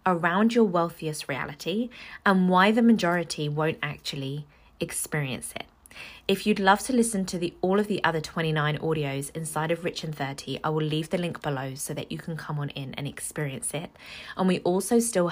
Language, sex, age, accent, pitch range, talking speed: English, female, 20-39, British, 150-190 Hz, 190 wpm